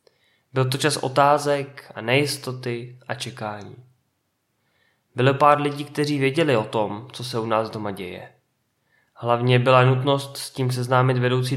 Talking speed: 145 wpm